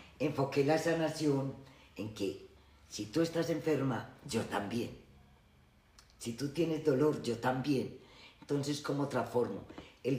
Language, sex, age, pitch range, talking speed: Spanish, female, 50-69, 120-145 Hz, 125 wpm